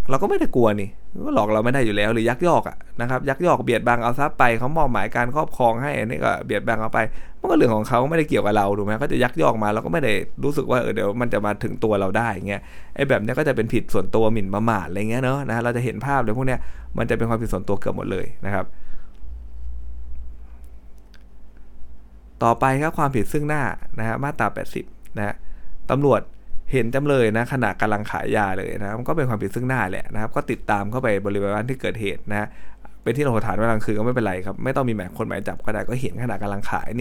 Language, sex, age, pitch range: Thai, male, 20-39, 100-120 Hz